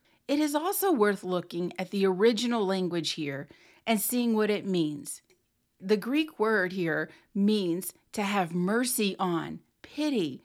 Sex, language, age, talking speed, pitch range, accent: female, English, 40-59, 145 wpm, 170-225 Hz, American